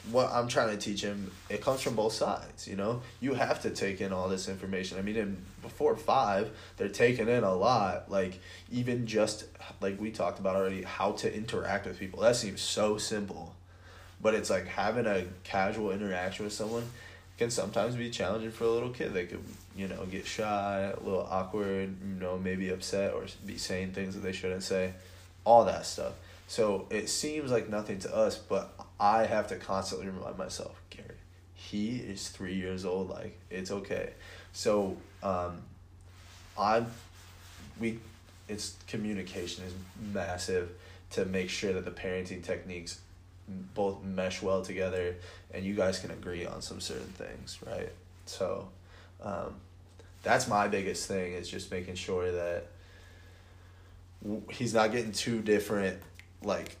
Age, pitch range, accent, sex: 20-39, 90-105 Hz, American, male